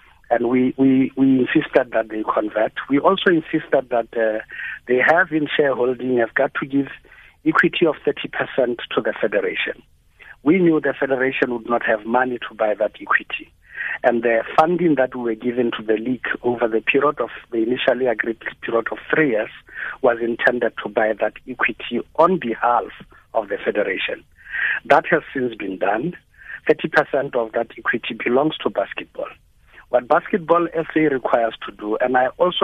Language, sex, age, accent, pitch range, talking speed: English, male, 60-79, South African, 120-160 Hz, 175 wpm